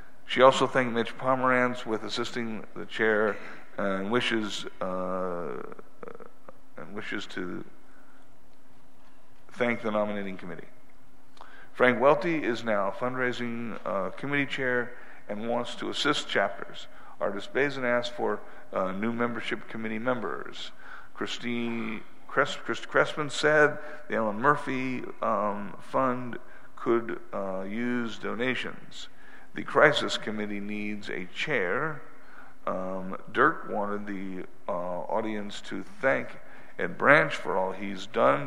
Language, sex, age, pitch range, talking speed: English, male, 50-69, 105-130 Hz, 115 wpm